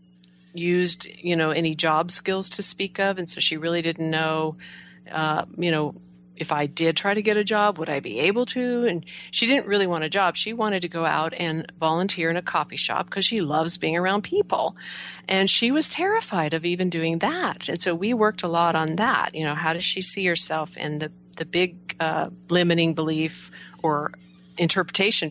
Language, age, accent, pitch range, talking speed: English, 40-59, American, 160-195 Hz, 205 wpm